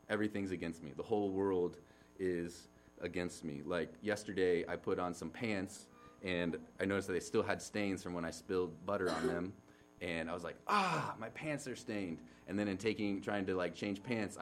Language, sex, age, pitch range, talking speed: English, male, 30-49, 85-120 Hz, 205 wpm